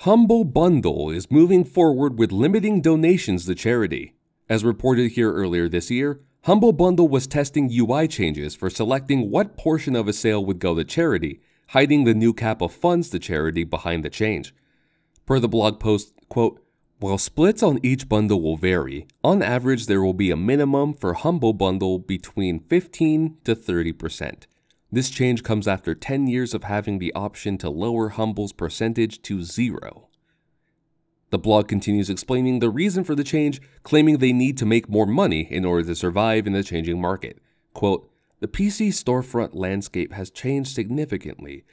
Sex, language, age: male, English, 30-49